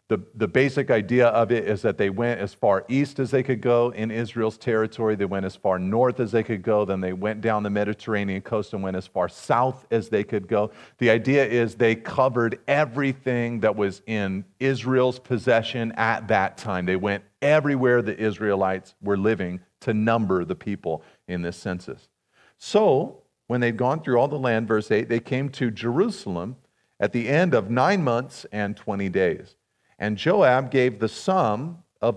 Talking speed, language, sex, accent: 190 wpm, English, male, American